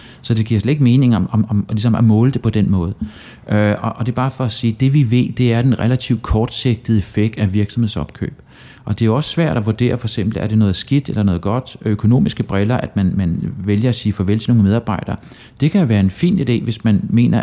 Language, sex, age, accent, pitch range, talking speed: Danish, male, 30-49, native, 100-120 Hz, 240 wpm